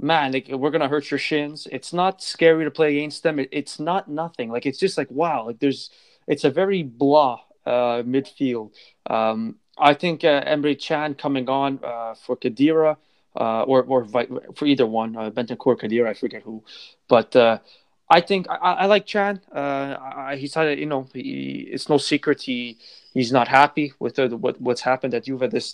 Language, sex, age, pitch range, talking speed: English, male, 20-39, 125-155 Hz, 200 wpm